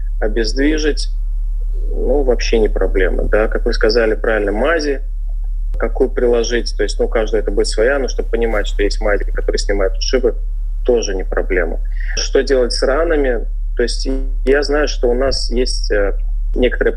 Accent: native